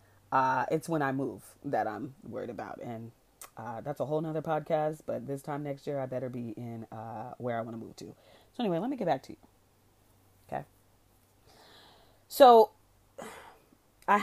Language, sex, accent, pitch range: English, female, American, 120-160 Hz